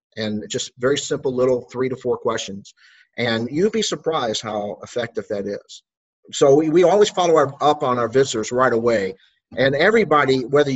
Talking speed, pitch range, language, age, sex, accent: 175 wpm, 120-170 Hz, English, 50-69, male, American